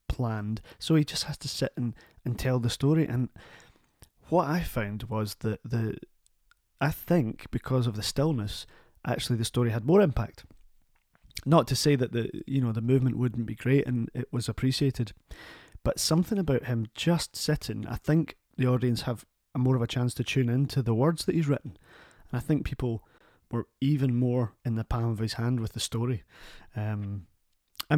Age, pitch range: 30-49, 110-135 Hz